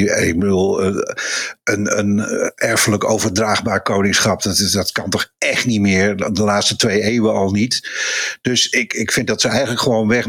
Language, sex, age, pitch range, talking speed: Dutch, male, 50-69, 130-170 Hz, 160 wpm